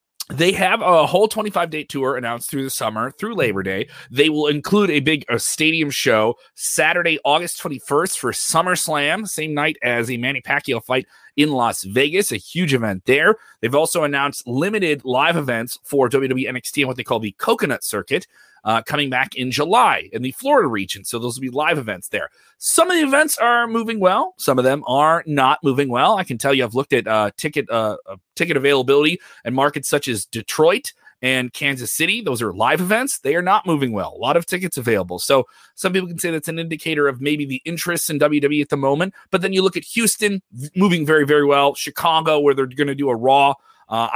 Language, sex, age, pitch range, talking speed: English, male, 30-49, 120-155 Hz, 210 wpm